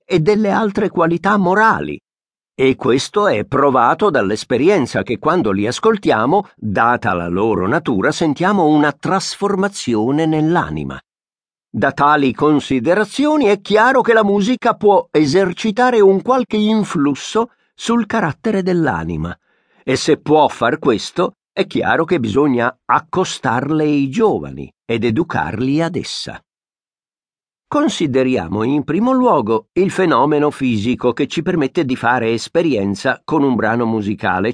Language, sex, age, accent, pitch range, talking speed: Italian, male, 50-69, native, 120-195 Hz, 125 wpm